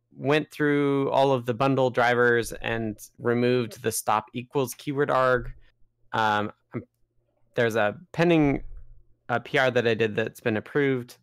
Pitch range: 110-130 Hz